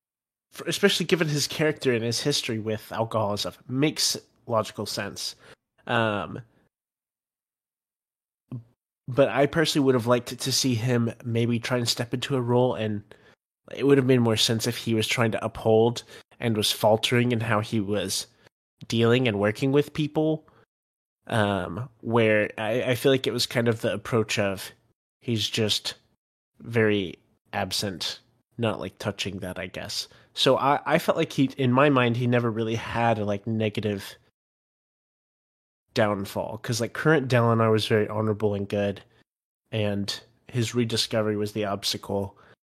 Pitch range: 105-125 Hz